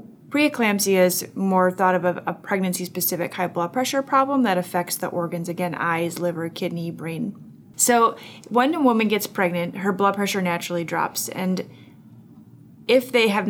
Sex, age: female, 20-39